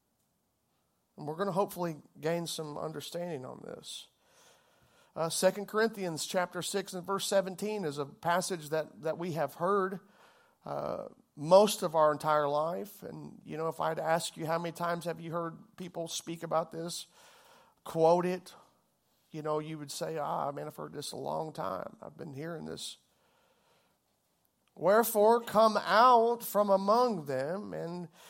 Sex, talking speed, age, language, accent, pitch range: male, 165 wpm, 50-69, English, American, 165-215 Hz